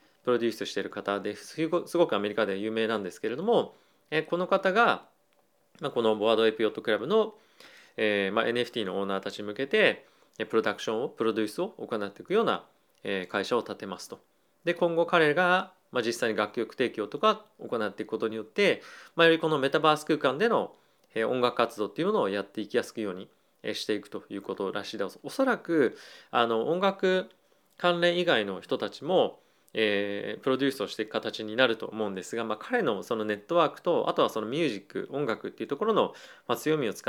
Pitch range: 110-165 Hz